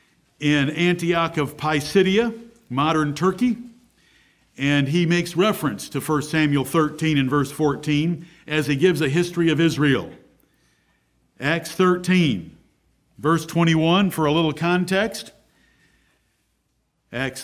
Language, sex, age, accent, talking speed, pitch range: English, male, 50-69, American, 115 wpm, 150-185 Hz